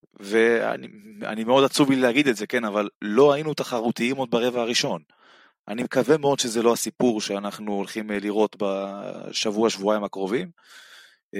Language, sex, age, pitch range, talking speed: Hebrew, male, 20-39, 100-135 Hz, 135 wpm